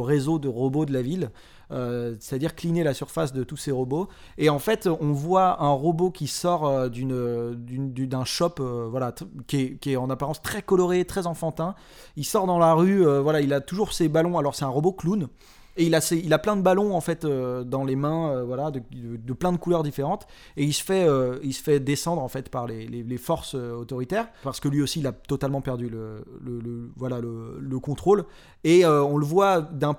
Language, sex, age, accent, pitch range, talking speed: French, male, 30-49, French, 135-175 Hz, 245 wpm